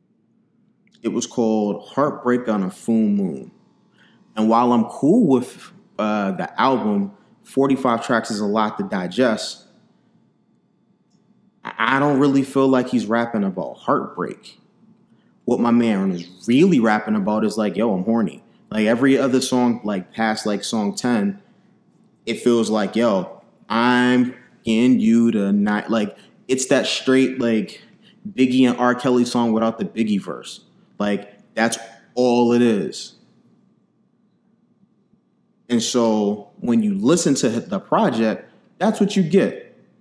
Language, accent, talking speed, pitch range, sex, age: English, American, 140 wpm, 105-145 Hz, male, 20-39